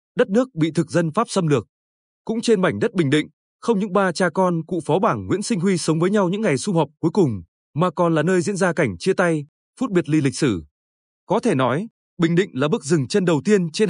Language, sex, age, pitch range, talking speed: Vietnamese, male, 20-39, 145-195 Hz, 260 wpm